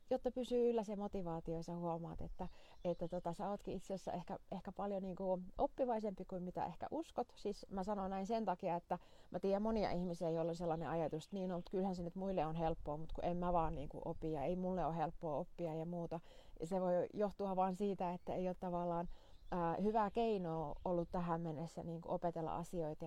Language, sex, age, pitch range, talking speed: Finnish, female, 30-49, 165-190 Hz, 210 wpm